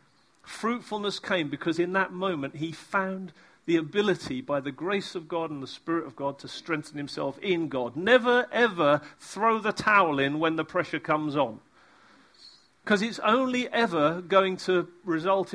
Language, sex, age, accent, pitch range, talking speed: English, male, 40-59, British, 165-210 Hz, 165 wpm